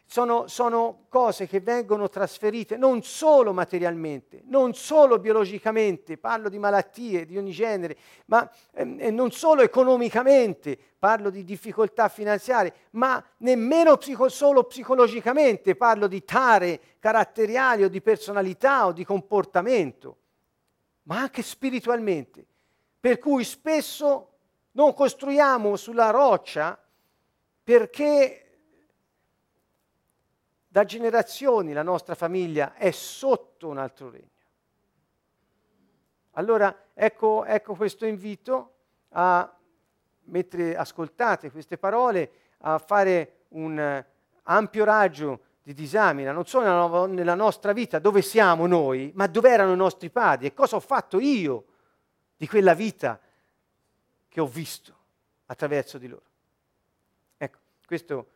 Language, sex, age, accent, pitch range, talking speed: Italian, male, 50-69, native, 175-240 Hz, 110 wpm